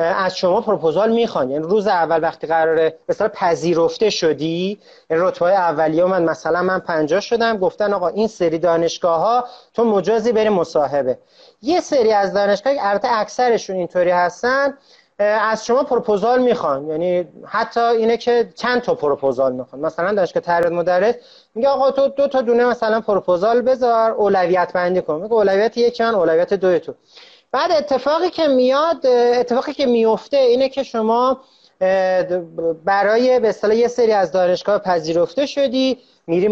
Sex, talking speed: male, 150 wpm